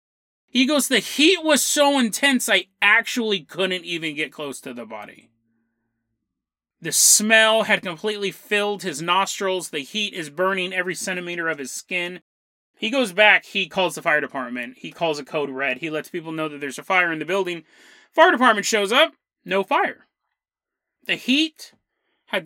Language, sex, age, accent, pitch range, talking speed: English, male, 30-49, American, 170-250 Hz, 175 wpm